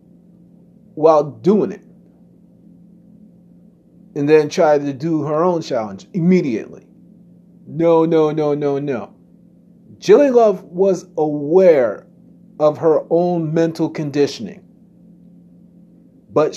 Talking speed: 100 wpm